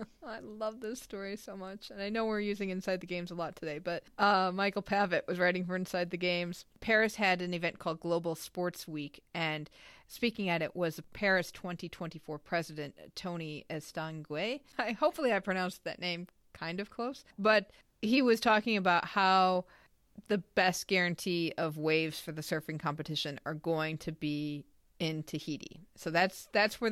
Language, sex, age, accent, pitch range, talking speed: English, female, 40-59, American, 165-215 Hz, 175 wpm